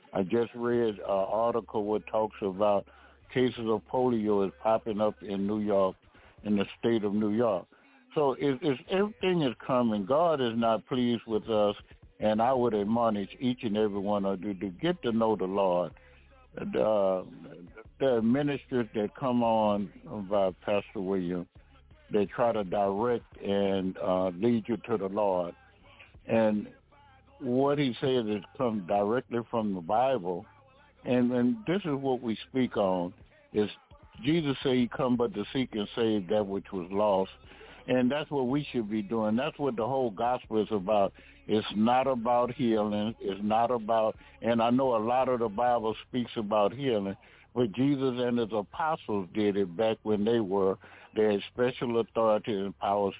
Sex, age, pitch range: male, 60-79, 100-125 Hz